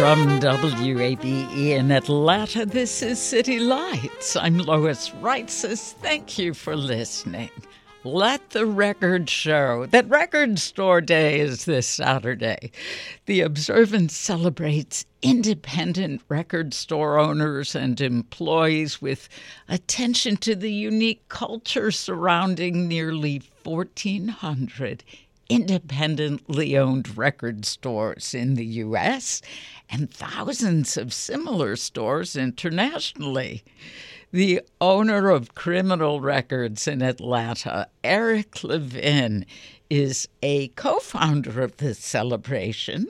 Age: 60-79